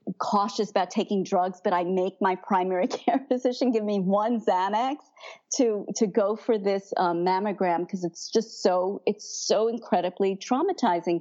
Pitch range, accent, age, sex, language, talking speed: 200-270 Hz, American, 50-69, female, English, 160 wpm